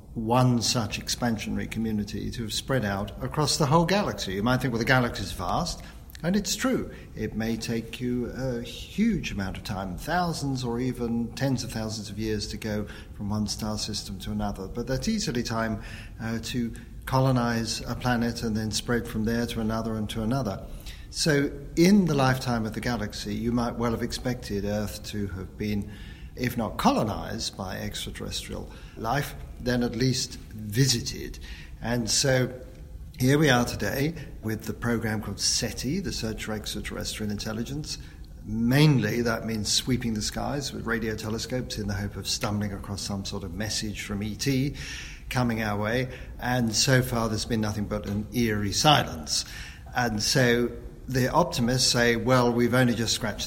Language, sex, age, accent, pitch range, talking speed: English, male, 50-69, British, 105-125 Hz, 170 wpm